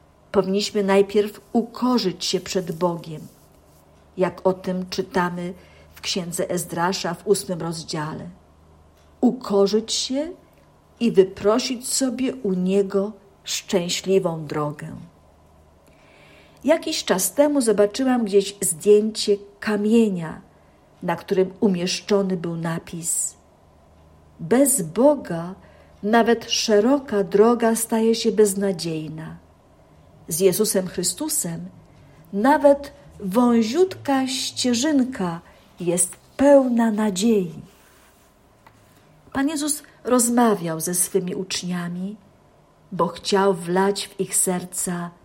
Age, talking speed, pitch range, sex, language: 50-69, 90 wpm, 175-225 Hz, female, Polish